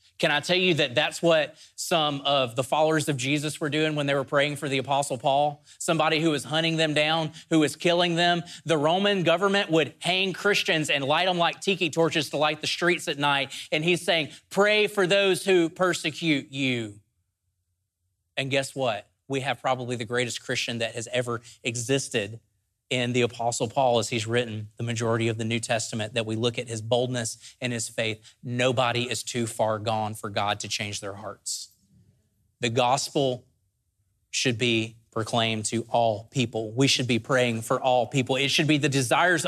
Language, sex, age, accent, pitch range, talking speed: English, male, 30-49, American, 115-155 Hz, 190 wpm